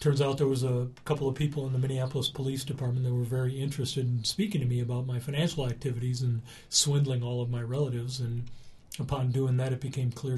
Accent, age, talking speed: American, 40-59, 220 wpm